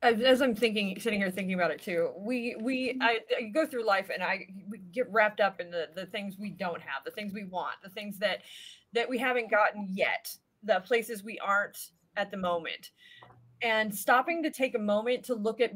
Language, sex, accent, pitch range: English, female, American, 200-250 Hz